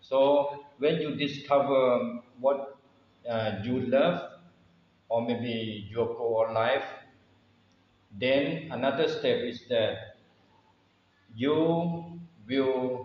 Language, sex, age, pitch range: Thai, male, 50-69, 100-130 Hz